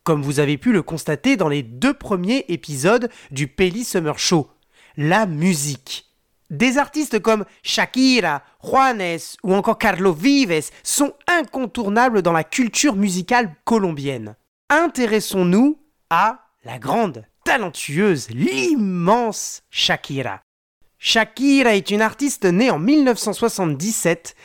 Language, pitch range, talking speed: French, 165-245 Hz, 115 wpm